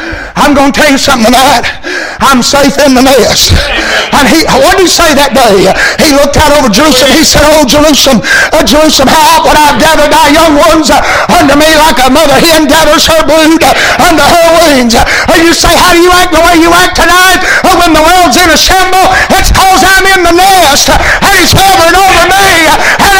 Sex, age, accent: male, 50-69, American